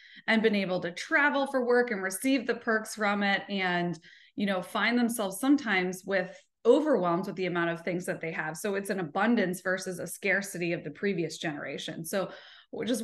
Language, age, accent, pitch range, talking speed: English, 20-39, American, 175-210 Hz, 195 wpm